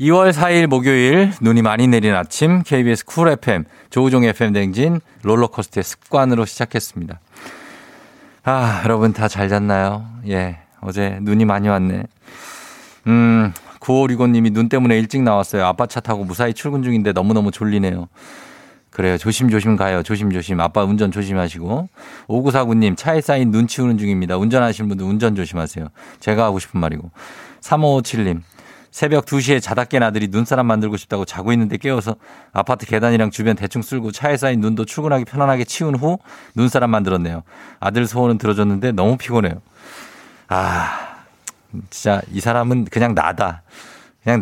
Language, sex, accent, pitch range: Korean, male, native, 100-130 Hz